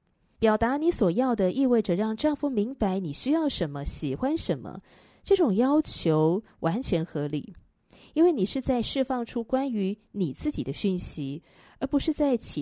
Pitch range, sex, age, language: 165-255 Hz, female, 30-49, Chinese